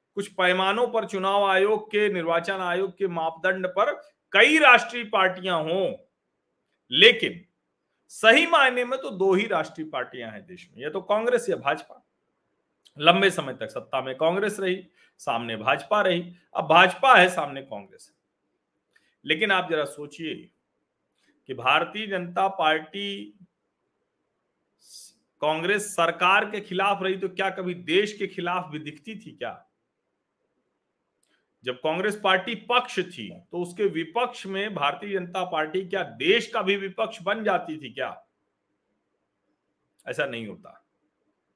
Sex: male